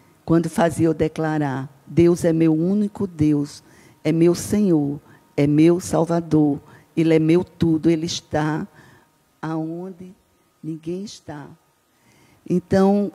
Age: 50-69